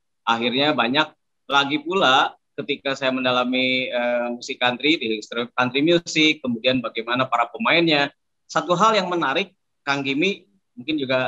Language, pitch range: Indonesian, 120-150 Hz